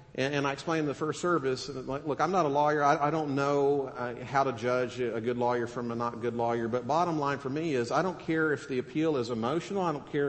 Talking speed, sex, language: 250 wpm, male, English